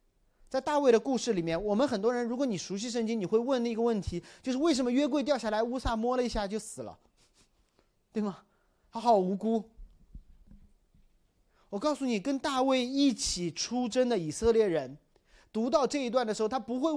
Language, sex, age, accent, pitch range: Chinese, male, 30-49, native, 175-260 Hz